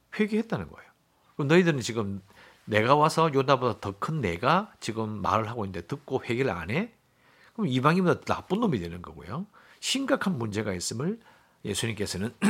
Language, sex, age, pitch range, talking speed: English, male, 50-69, 100-160 Hz, 135 wpm